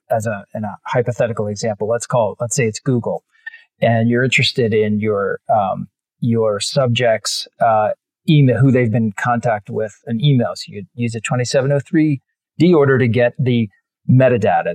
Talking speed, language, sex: 165 wpm, English, male